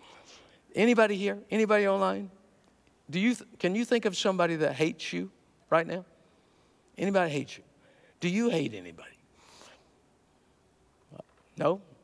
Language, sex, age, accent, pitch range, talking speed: English, male, 50-69, American, 165-230 Hz, 120 wpm